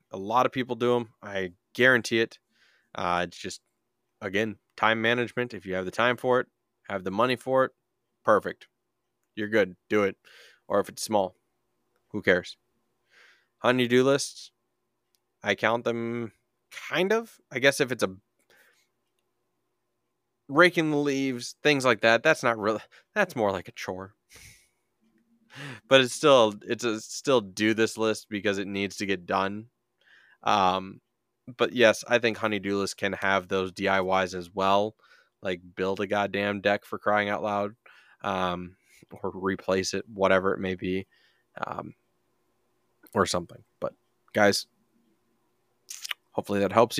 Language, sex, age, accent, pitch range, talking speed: English, male, 20-39, American, 95-120 Hz, 150 wpm